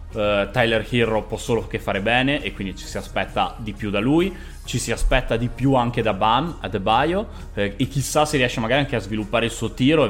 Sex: male